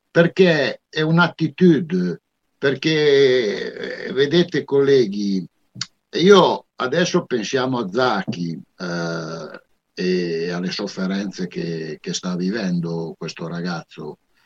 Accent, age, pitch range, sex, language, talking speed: native, 60-79, 100-155 Hz, male, Italian, 85 wpm